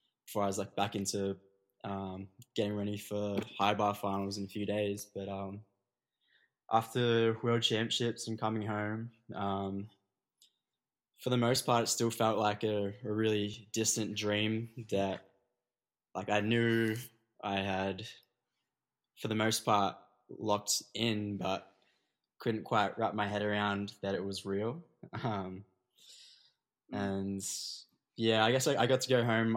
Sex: male